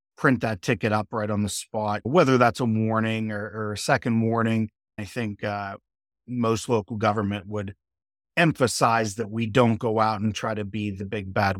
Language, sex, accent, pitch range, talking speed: English, male, American, 100-115 Hz, 190 wpm